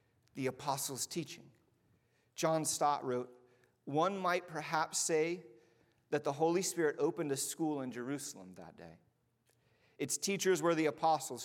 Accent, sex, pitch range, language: American, male, 130-190 Hz, English